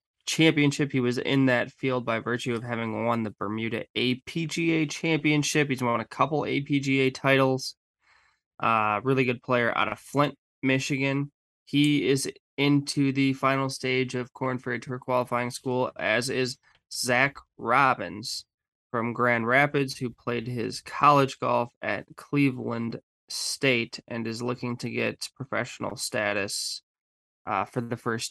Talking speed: 140 wpm